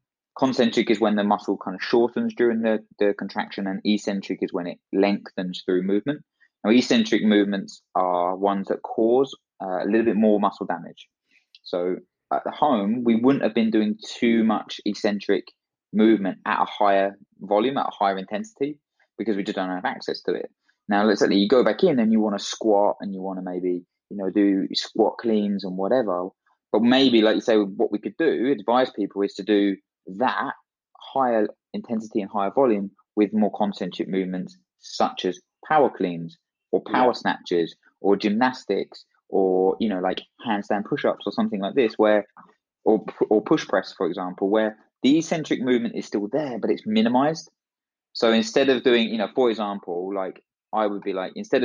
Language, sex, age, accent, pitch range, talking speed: English, male, 20-39, British, 95-115 Hz, 190 wpm